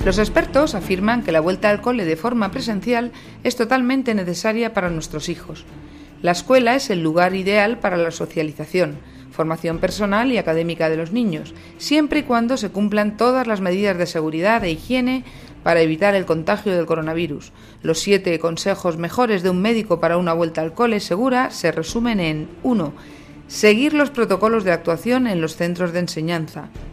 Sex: female